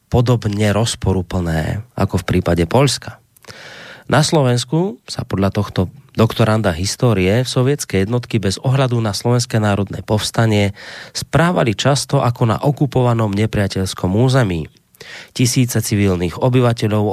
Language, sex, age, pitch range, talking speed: Slovak, male, 30-49, 100-130 Hz, 110 wpm